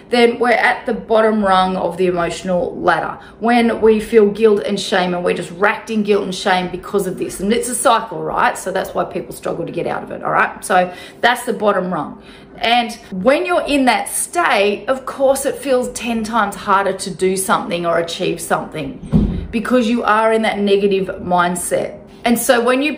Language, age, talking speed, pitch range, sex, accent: English, 30-49, 205 wpm, 190-230 Hz, female, Australian